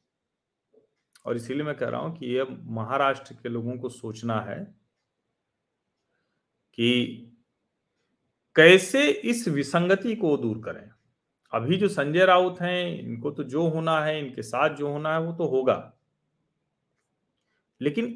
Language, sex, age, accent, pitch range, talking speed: Hindi, male, 40-59, native, 120-195 Hz, 130 wpm